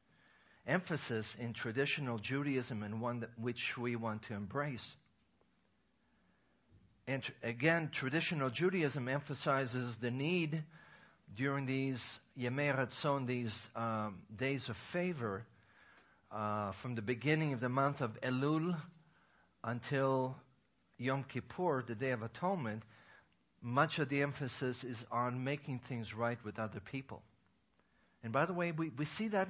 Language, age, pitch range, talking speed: English, 50-69, 115-145 Hz, 130 wpm